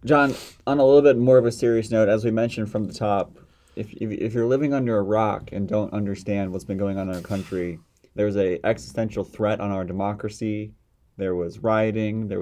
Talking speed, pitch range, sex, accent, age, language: 220 wpm, 100-120 Hz, male, American, 30-49, English